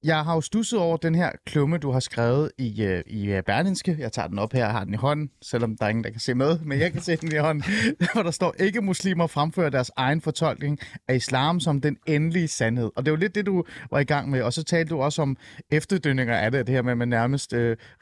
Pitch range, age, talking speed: 125-165 Hz, 30-49, 265 wpm